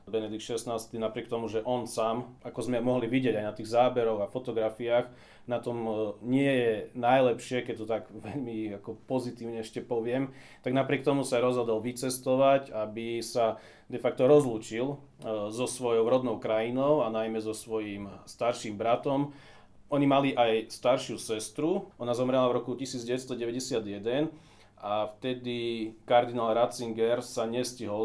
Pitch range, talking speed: 110-125 Hz, 145 wpm